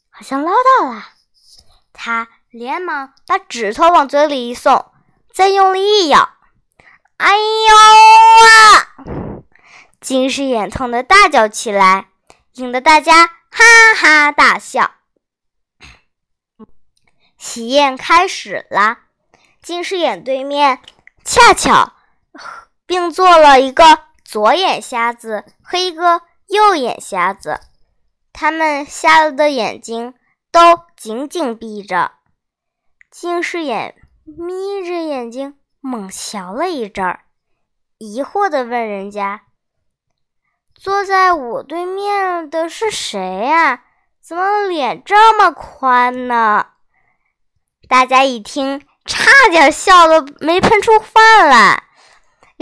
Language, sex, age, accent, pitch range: Chinese, male, 20-39, native, 245-370 Hz